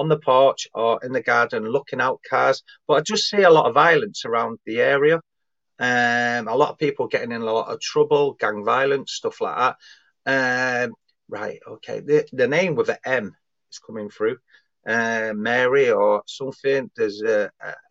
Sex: male